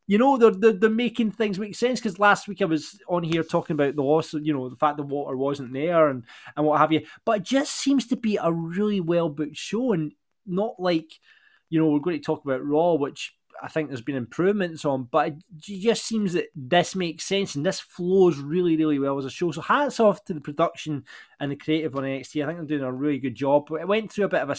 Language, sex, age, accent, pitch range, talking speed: English, male, 20-39, British, 150-200 Hz, 260 wpm